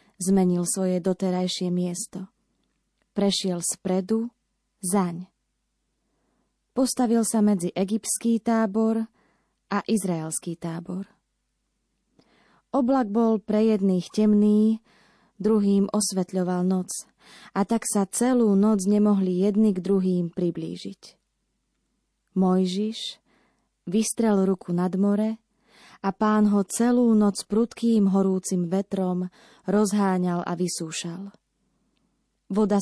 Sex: female